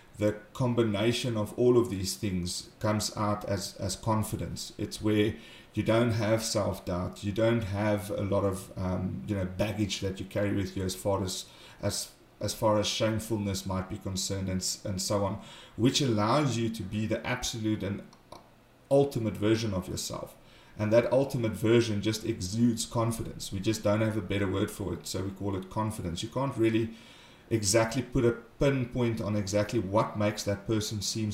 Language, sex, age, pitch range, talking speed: English, male, 30-49, 100-115 Hz, 185 wpm